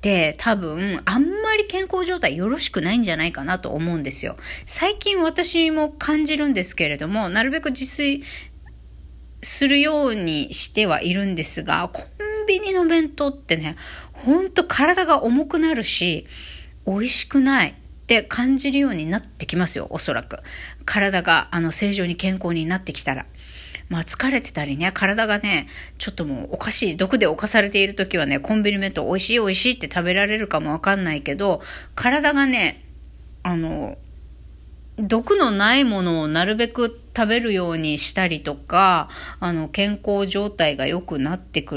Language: Japanese